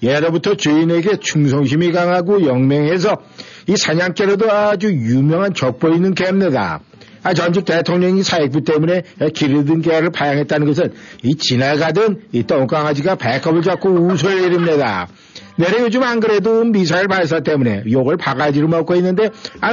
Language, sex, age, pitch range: Korean, male, 60-79, 130-195 Hz